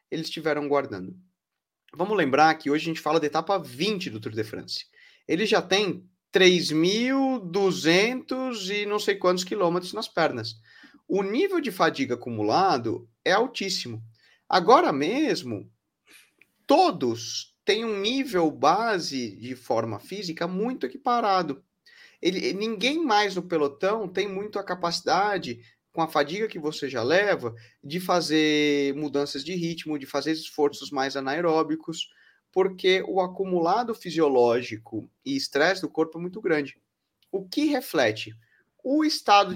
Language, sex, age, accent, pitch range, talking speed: Portuguese, male, 30-49, Brazilian, 140-205 Hz, 135 wpm